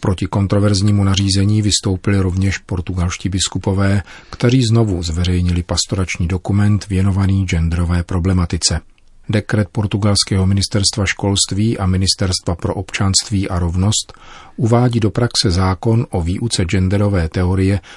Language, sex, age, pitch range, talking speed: Czech, male, 40-59, 90-105 Hz, 110 wpm